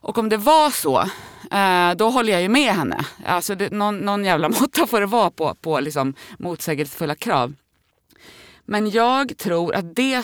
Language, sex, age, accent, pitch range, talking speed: English, female, 30-49, Swedish, 170-250 Hz, 170 wpm